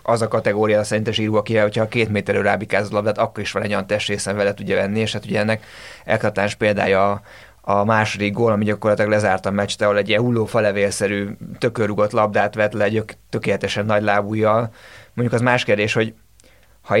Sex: male